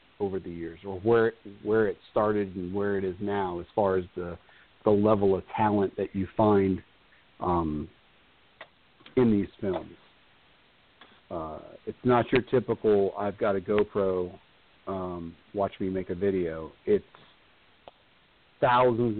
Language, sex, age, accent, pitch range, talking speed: English, male, 40-59, American, 90-110 Hz, 140 wpm